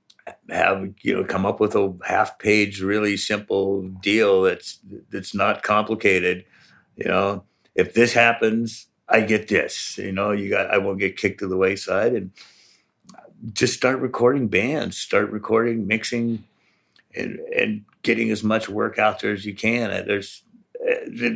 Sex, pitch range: male, 100-115 Hz